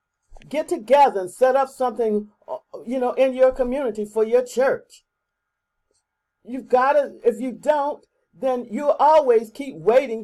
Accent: American